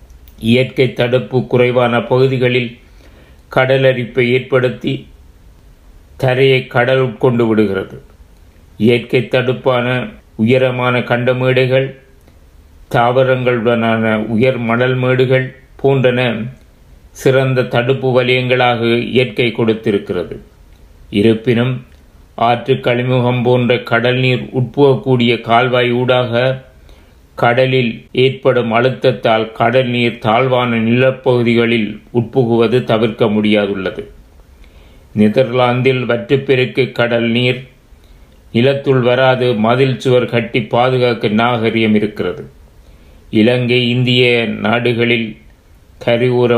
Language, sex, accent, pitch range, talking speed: Tamil, male, native, 110-125 Hz, 75 wpm